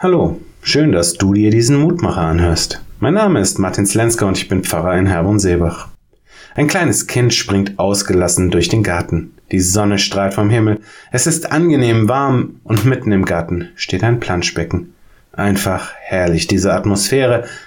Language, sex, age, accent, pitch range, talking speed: German, male, 30-49, German, 95-120 Hz, 165 wpm